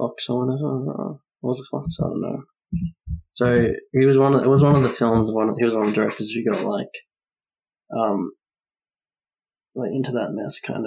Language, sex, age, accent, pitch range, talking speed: English, male, 20-39, Australian, 110-125 Hz, 220 wpm